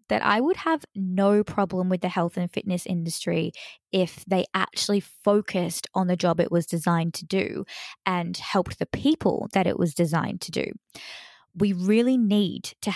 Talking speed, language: 175 wpm, English